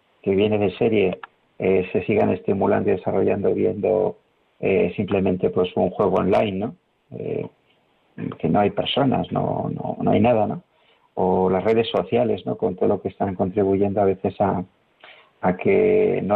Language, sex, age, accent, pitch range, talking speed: Spanish, male, 50-69, Spanish, 95-115 Hz, 170 wpm